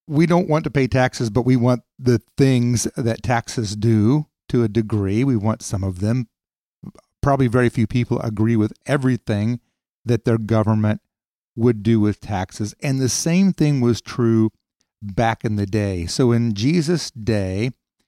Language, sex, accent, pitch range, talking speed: English, male, American, 105-130 Hz, 165 wpm